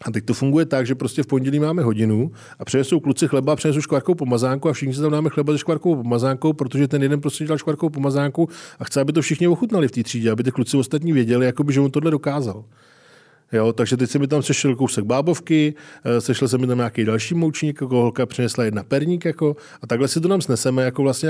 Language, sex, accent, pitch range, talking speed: Czech, male, native, 115-145 Hz, 230 wpm